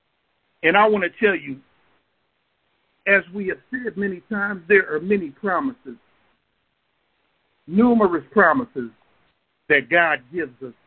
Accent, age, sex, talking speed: American, 50-69, male, 120 wpm